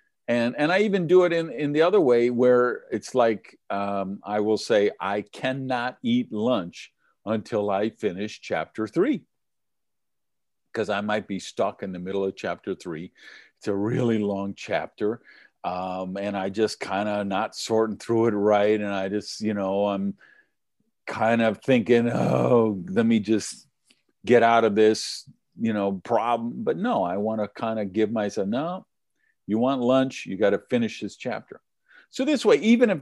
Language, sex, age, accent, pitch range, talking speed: English, male, 50-69, American, 95-120 Hz, 180 wpm